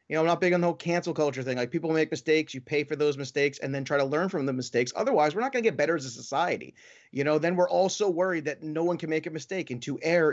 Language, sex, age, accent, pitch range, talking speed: English, male, 30-49, American, 125-160 Hz, 320 wpm